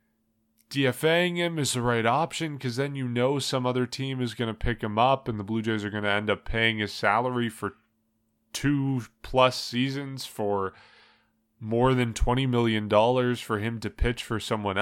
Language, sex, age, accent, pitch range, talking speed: English, male, 20-39, American, 105-125 Hz, 185 wpm